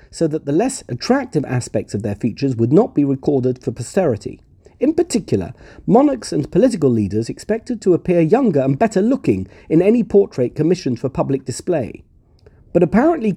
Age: 50-69